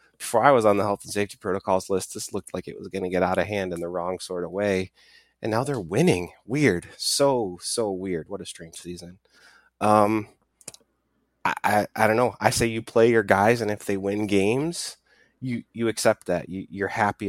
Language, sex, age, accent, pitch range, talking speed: English, male, 20-39, American, 90-115 Hz, 220 wpm